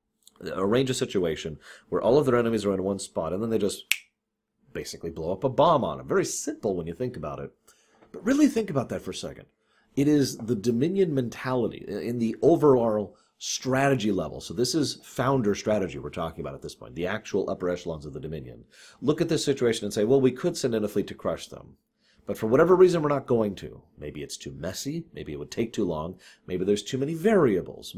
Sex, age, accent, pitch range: male, 40-59, American, 95-140 Hz